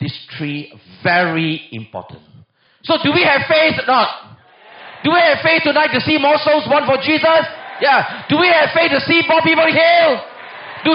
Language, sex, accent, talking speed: English, male, Malaysian, 190 wpm